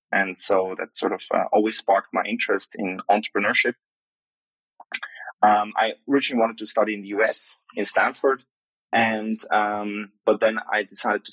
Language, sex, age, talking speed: English, male, 20-39, 160 wpm